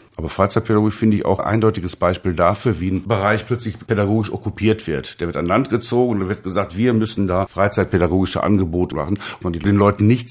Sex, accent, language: male, German, German